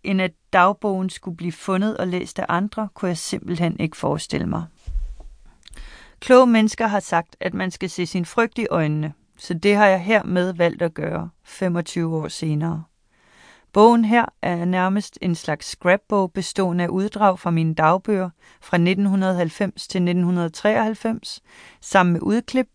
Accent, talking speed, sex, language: native, 155 wpm, female, Danish